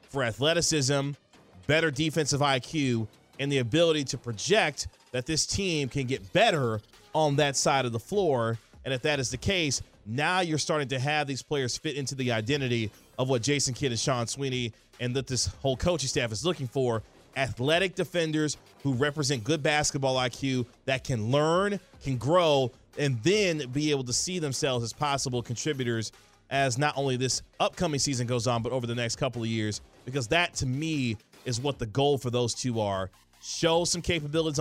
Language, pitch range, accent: English, 125-160 Hz, American